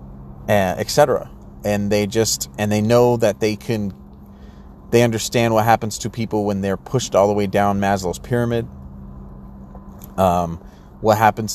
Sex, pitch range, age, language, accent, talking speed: male, 90-115 Hz, 30-49, English, American, 145 wpm